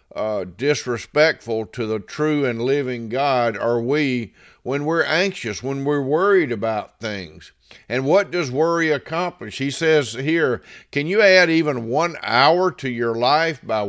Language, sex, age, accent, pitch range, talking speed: English, male, 50-69, American, 125-155 Hz, 155 wpm